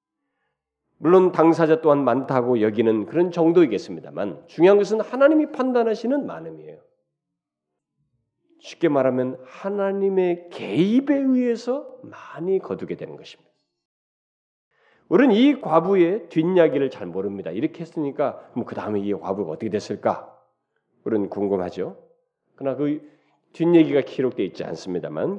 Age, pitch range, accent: 40-59, 140-210 Hz, native